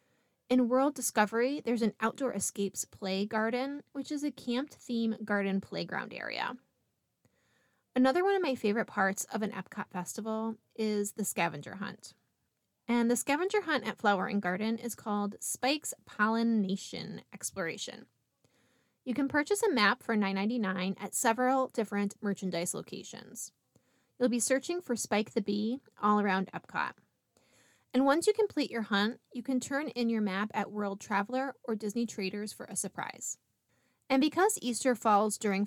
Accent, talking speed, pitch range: American, 155 wpm, 205-255 Hz